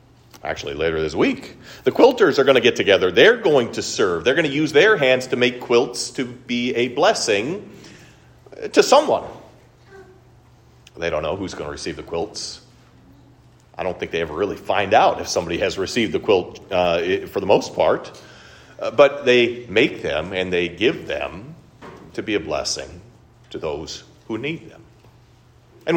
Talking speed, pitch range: 180 wpm, 115-145 Hz